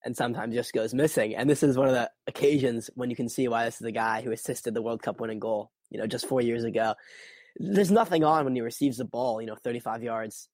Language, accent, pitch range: English, American, 115-150 Hz